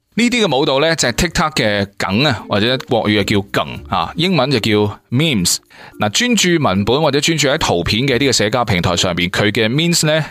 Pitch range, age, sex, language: 100-150 Hz, 20-39, male, Chinese